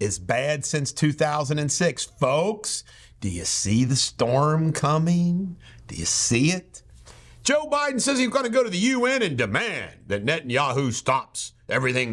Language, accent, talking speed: English, American, 155 wpm